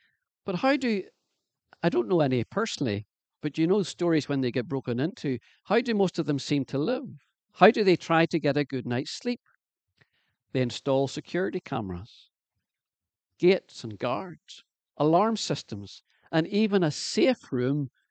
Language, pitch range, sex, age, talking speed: English, 120-160 Hz, male, 50-69, 160 wpm